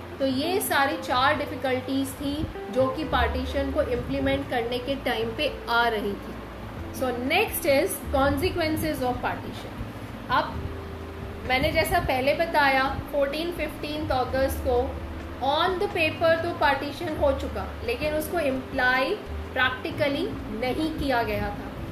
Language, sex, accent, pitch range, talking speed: Hindi, female, native, 265-320 Hz, 120 wpm